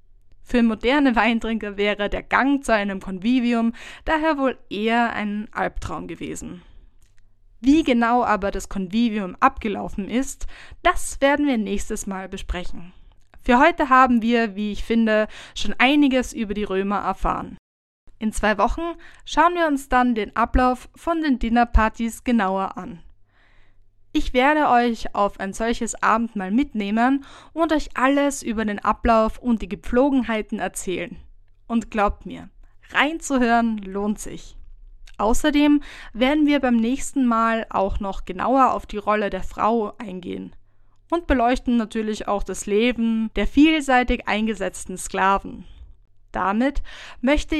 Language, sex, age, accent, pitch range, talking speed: German, female, 20-39, German, 195-255 Hz, 135 wpm